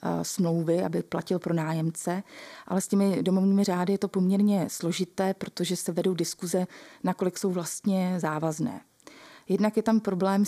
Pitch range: 170-195 Hz